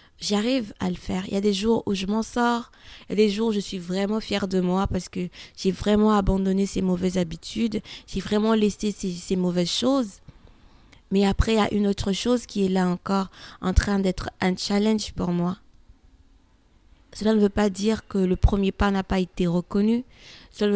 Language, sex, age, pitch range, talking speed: French, female, 20-39, 180-205 Hz, 215 wpm